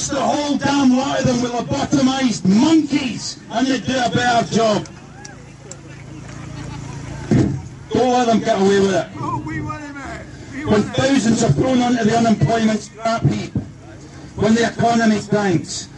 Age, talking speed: 50-69, 130 wpm